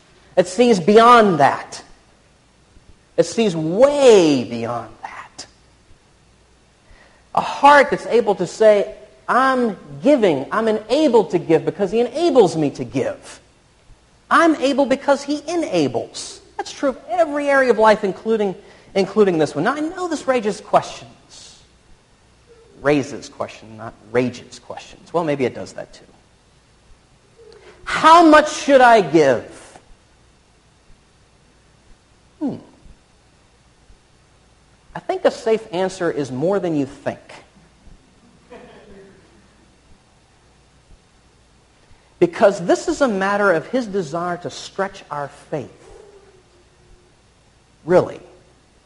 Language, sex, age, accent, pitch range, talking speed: English, male, 40-59, American, 170-270 Hz, 110 wpm